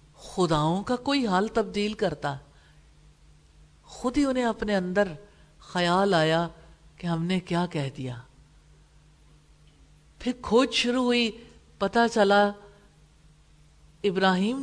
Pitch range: 125-200 Hz